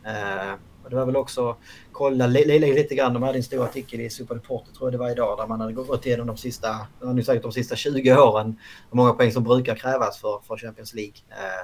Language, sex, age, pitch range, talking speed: Swedish, male, 30-49, 110-130 Hz, 240 wpm